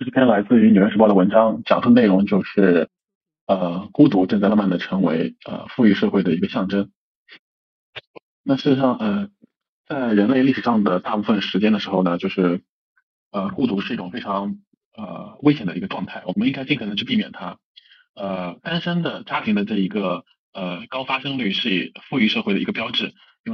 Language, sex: Chinese, male